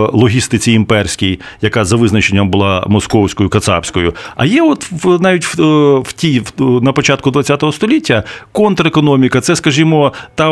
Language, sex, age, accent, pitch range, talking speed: Ukrainian, male, 40-59, native, 105-150 Hz, 125 wpm